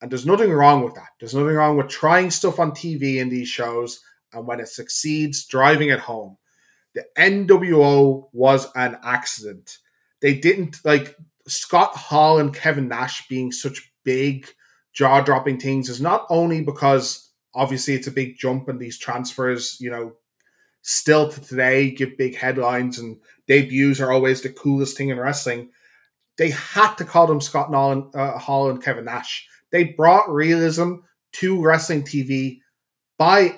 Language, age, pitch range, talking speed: English, 20-39, 130-160 Hz, 155 wpm